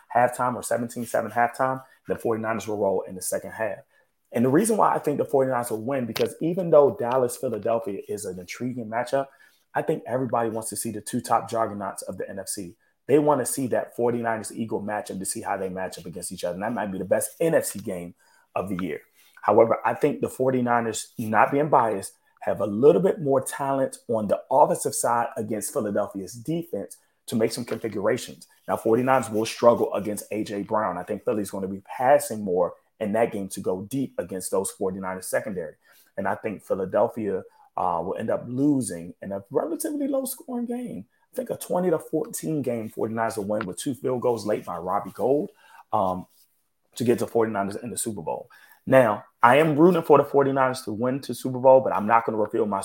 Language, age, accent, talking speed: English, 30-49, American, 205 wpm